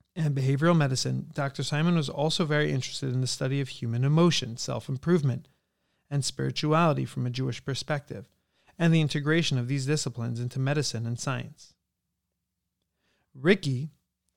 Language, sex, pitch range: English, male, 130-155 Hz